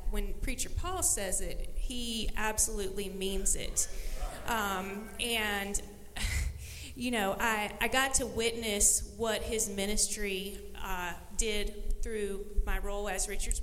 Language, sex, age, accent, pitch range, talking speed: English, female, 30-49, American, 195-230 Hz, 125 wpm